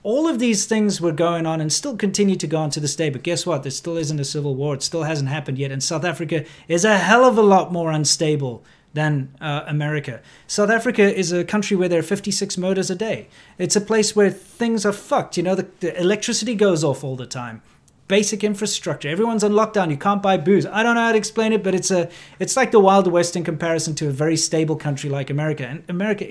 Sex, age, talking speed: male, 30-49, 245 wpm